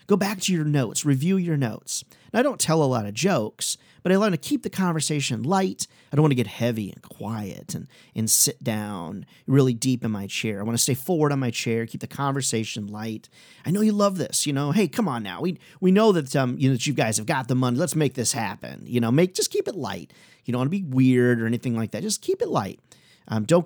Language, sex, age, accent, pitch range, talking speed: English, male, 40-59, American, 115-175 Hz, 265 wpm